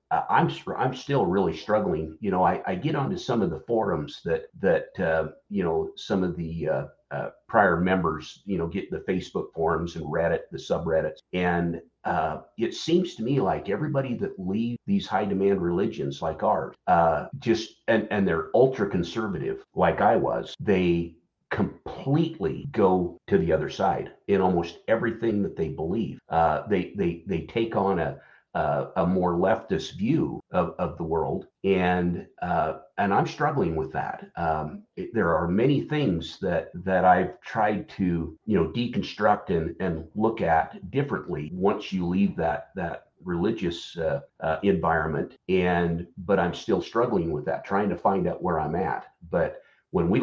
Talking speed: 175 wpm